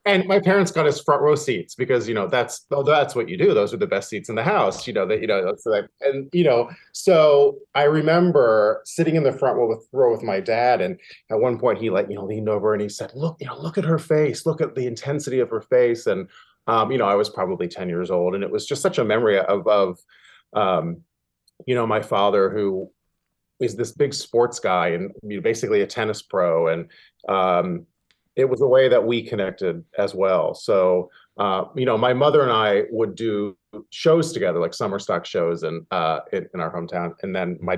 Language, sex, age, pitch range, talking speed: English, male, 30-49, 105-170 Hz, 235 wpm